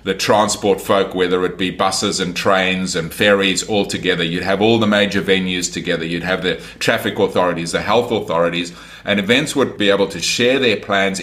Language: English